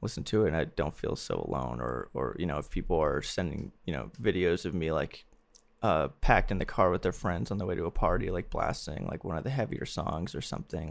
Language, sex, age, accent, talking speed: English, male, 20-39, American, 260 wpm